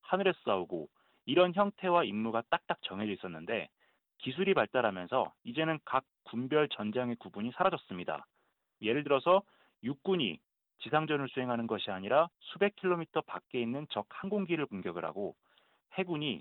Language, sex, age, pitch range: Korean, male, 30-49, 120-180 Hz